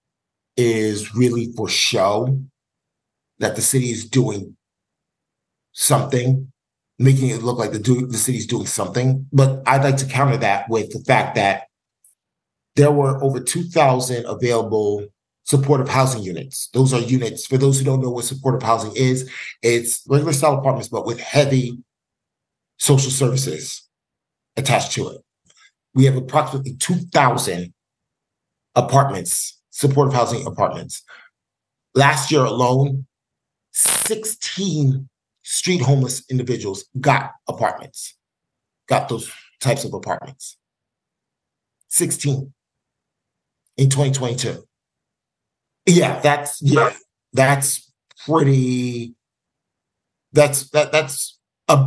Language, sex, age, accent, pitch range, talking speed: English, male, 30-49, American, 120-140 Hz, 110 wpm